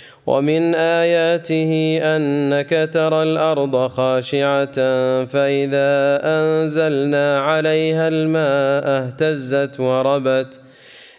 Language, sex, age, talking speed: Arabic, male, 30-49, 65 wpm